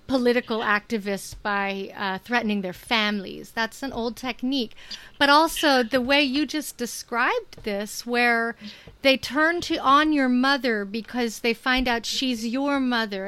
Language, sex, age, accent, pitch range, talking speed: English, female, 40-59, American, 205-265 Hz, 145 wpm